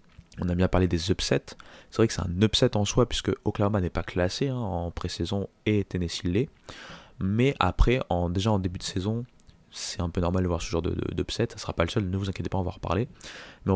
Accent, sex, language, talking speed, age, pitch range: French, male, French, 245 wpm, 20-39, 90-110 Hz